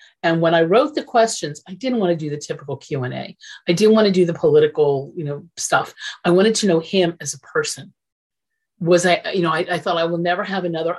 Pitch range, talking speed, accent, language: 160-200 Hz, 250 wpm, American, English